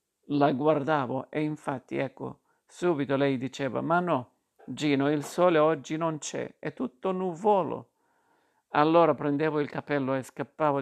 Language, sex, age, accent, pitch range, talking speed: Italian, male, 50-69, native, 135-155 Hz, 145 wpm